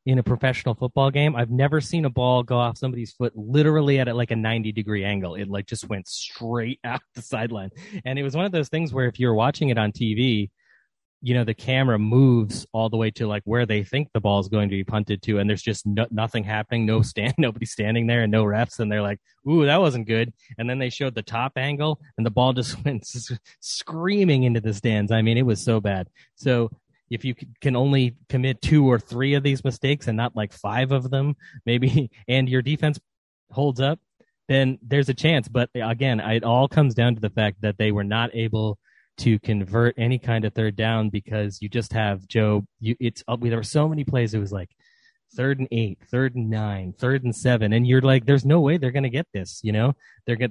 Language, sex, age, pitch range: English, male, 30-49, 110-135 Hz